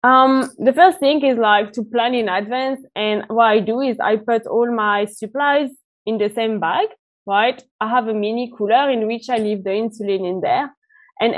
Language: English